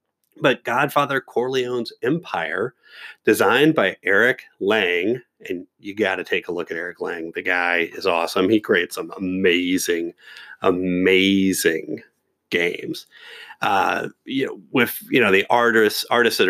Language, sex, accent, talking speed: English, male, American, 140 wpm